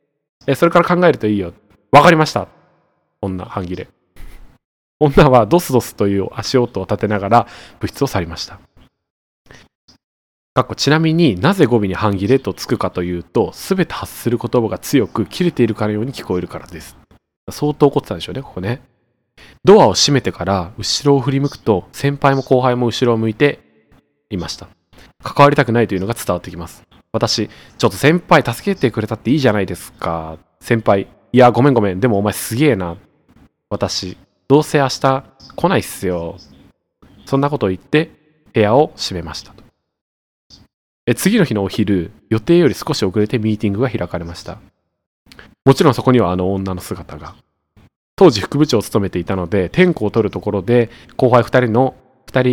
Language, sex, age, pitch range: Japanese, male, 20-39, 95-135 Hz